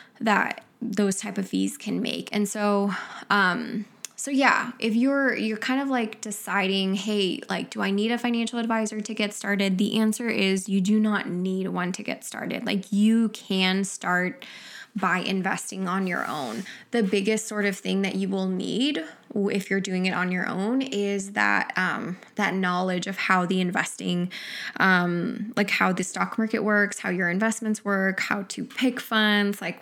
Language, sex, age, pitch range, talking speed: English, female, 10-29, 190-220 Hz, 185 wpm